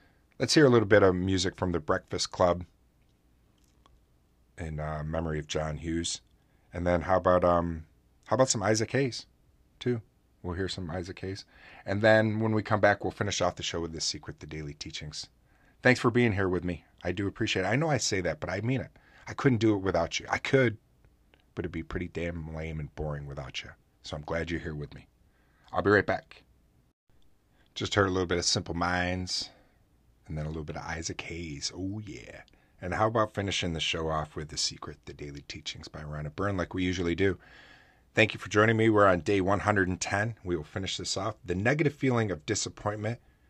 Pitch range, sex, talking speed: 75-100 Hz, male, 215 wpm